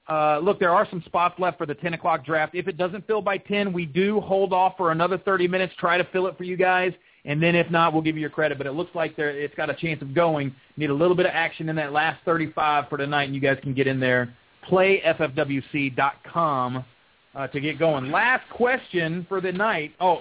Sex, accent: male, American